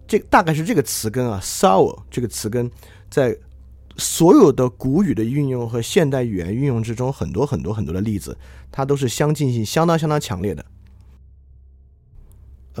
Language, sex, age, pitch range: Chinese, male, 30-49, 100-140 Hz